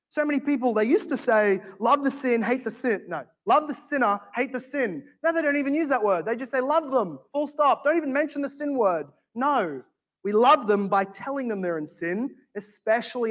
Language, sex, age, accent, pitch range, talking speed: English, male, 20-39, Australian, 185-245 Hz, 230 wpm